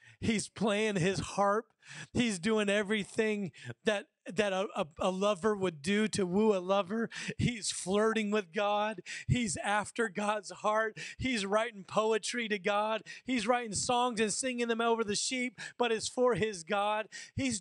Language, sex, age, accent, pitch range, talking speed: English, male, 30-49, American, 215-290 Hz, 155 wpm